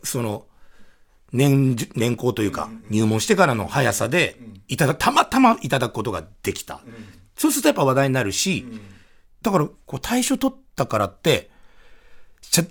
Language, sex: Japanese, male